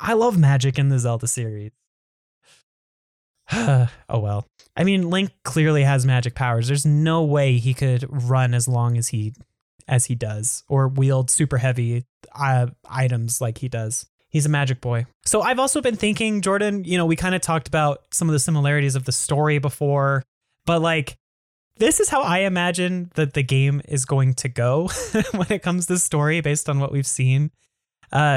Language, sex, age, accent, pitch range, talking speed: English, male, 10-29, American, 125-155 Hz, 185 wpm